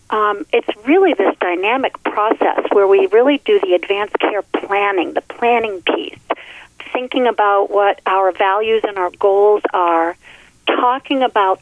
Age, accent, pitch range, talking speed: 40-59, American, 190-235 Hz, 145 wpm